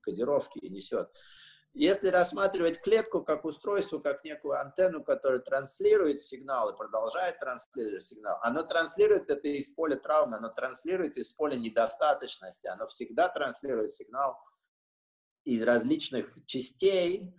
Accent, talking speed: native, 120 wpm